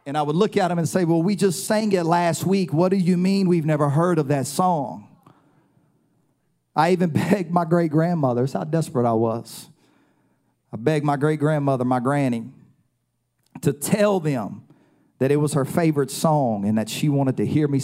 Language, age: English, 40-59